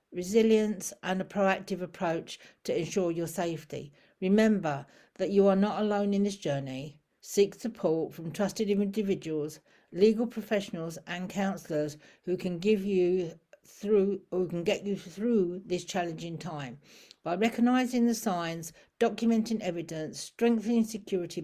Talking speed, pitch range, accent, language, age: 135 wpm, 170-220 Hz, British, English, 60-79